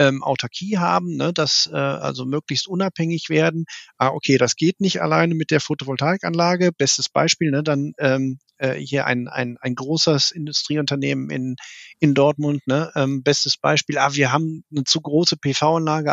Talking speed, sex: 155 wpm, male